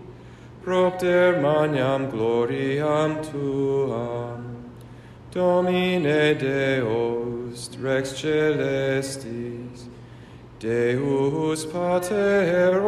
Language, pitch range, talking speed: English, 135-205 Hz, 45 wpm